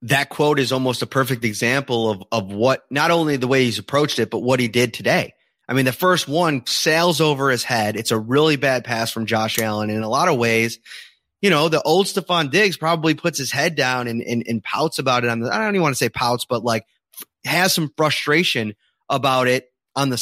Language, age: English, 30-49